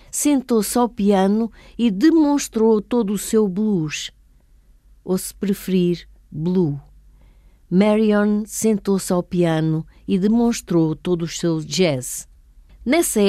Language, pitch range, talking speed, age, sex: Portuguese, 175-240 Hz, 110 wpm, 50-69, female